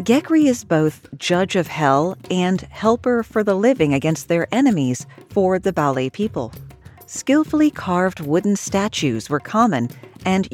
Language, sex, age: English, female, 40-59